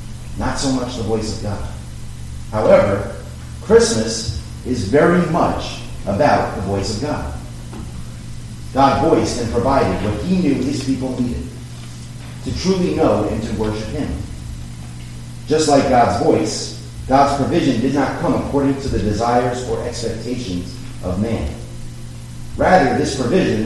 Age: 30-49